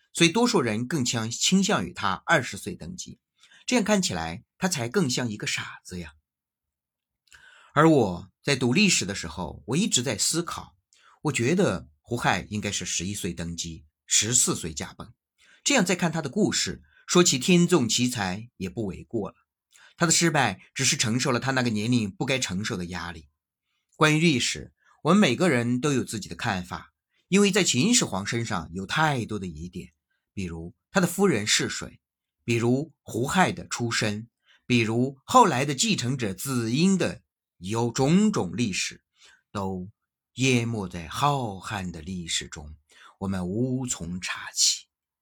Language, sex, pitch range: Chinese, male, 90-150 Hz